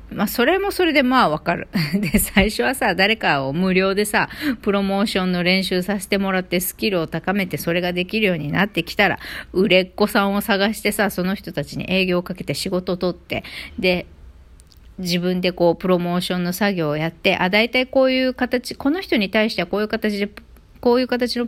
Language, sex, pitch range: Japanese, female, 180-250 Hz